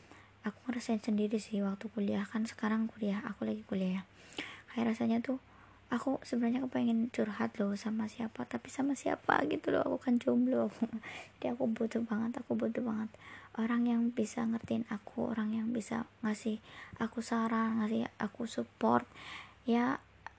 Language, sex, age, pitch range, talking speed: Indonesian, male, 20-39, 205-230 Hz, 155 wpm